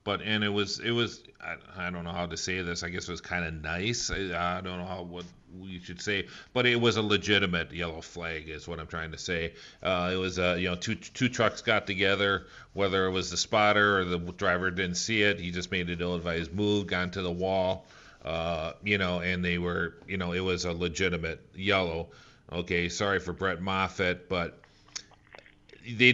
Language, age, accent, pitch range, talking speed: English, 40-59, American, 90-105 Hz, 220 wpm